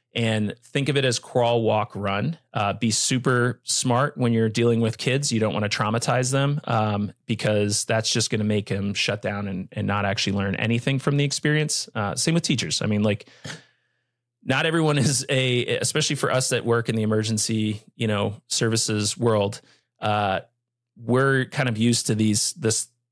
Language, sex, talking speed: English, male, 190 wpm